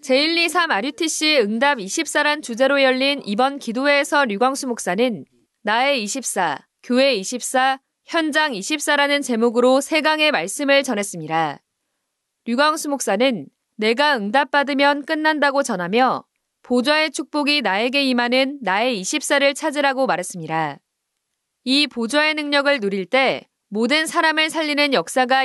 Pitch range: 235-295 Hz